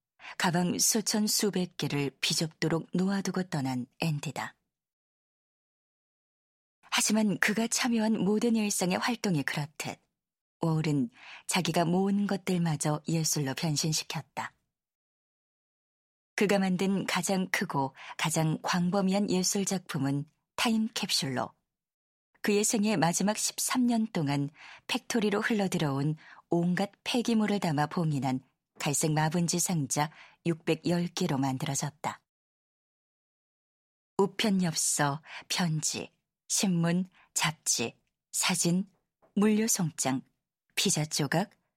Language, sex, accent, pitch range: Korean, female, native, 150-200 Hz